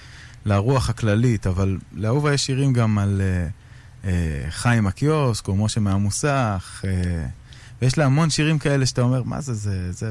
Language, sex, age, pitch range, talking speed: Hebrew, male, 20-39, 100-130 Hz, 160 wpm